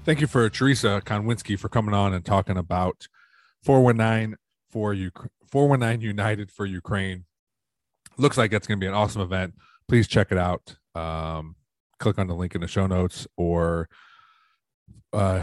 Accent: American